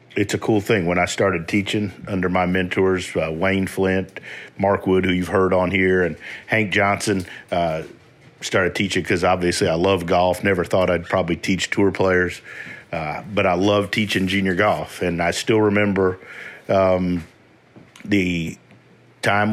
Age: 50-69